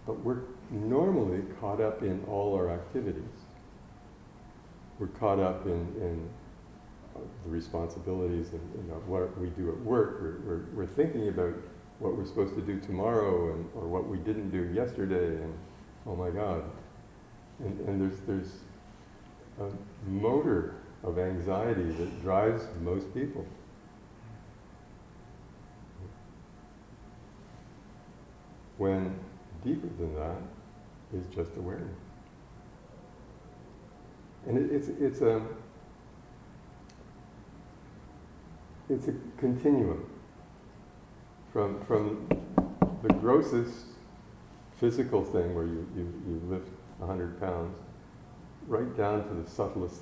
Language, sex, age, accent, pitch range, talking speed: English, male, 50-69, American, 85-105 Hz, 105 wpm